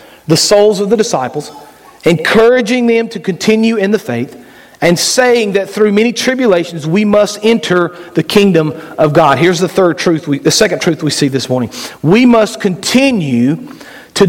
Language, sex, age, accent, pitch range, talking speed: English, male, 40-59, American, 160-215 Hz, 170 wpm